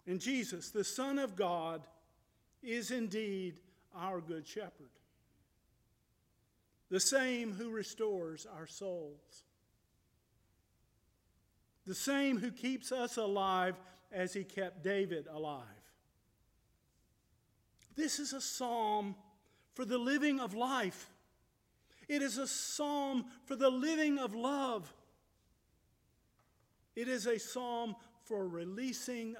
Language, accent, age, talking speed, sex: English, American, 50-69, 105 wpm, male